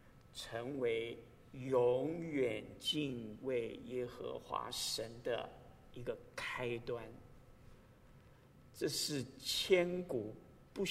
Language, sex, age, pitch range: Chinese, male, 50-69, 120-160 Hz